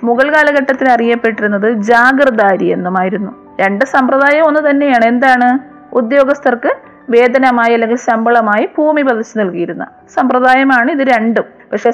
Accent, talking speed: native, 105 wpm